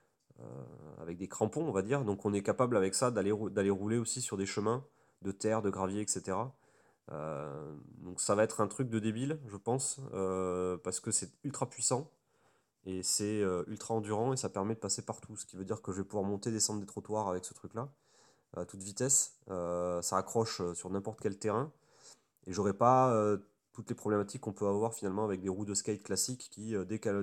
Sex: male